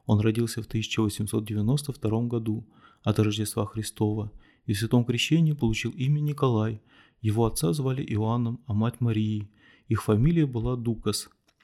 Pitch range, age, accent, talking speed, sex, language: 110-130 Hz, 30-49, native, 135 wpm, male, Russian